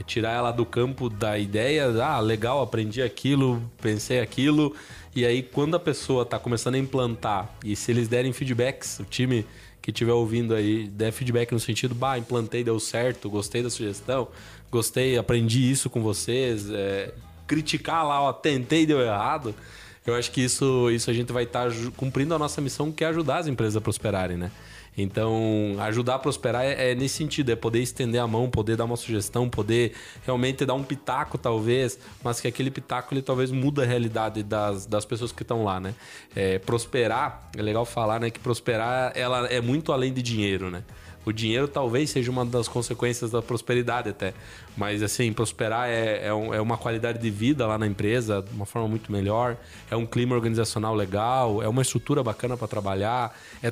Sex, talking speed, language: male, 190 wpm, Portuguese